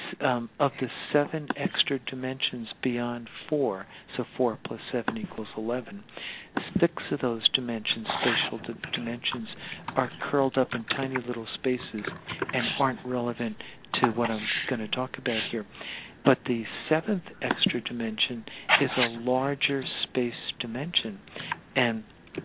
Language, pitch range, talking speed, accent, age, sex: English, 120-145 Hz, 130 wpm, American, 50-69, male